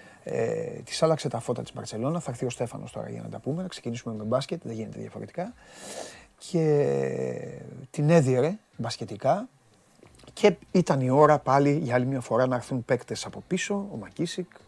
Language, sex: Greek, male